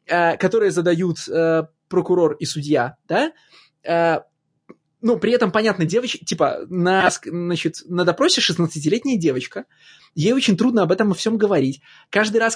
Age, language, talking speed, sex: 20-39, Russian, 130 wpm, male